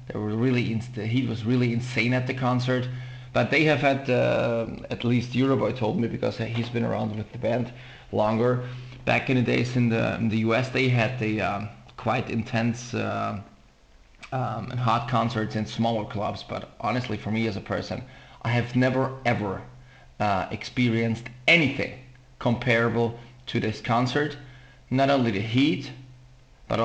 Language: English